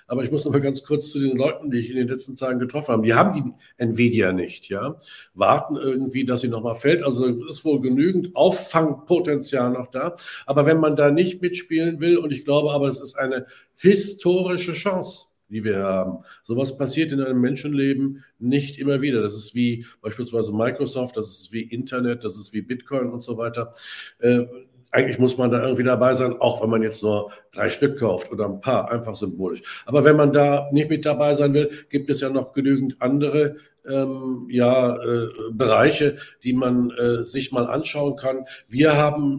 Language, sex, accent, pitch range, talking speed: German, male, German, 125-150 Hz, 195 wpm